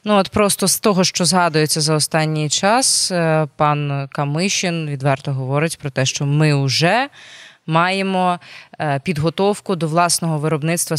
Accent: native